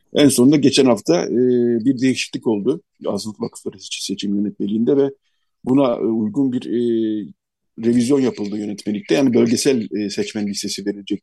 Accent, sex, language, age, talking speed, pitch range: native, male, Turkish, 50-69, 145 wpm, 110-165 Hz